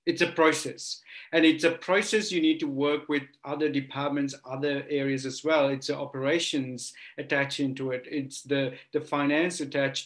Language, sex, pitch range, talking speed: English, male, 135-150 Hz, 175 wpm